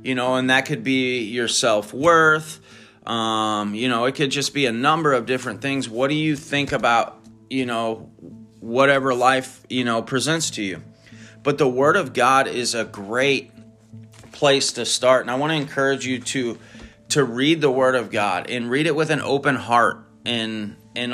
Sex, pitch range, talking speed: male, 115-135 Hz, 185 wpm